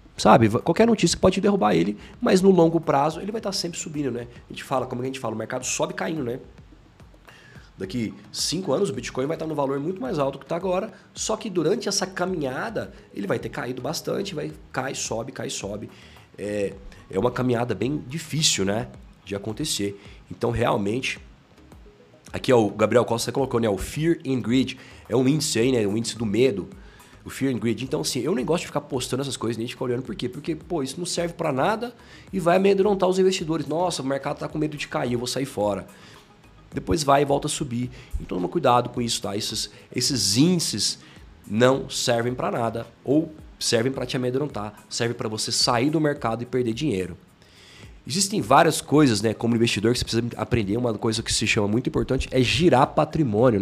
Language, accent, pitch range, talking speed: Portuguese, Brazilian, 110-155 Hz, 210 wpm